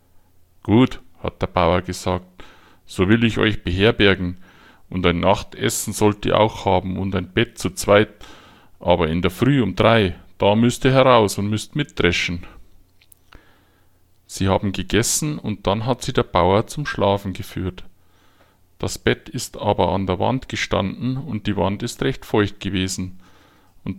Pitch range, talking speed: 90-115 Hz, 160 wpm